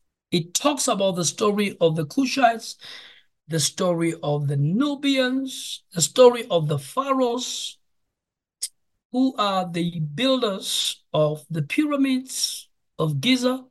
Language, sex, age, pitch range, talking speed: English, male, 60-79, 155-225 Hz, 120 wpm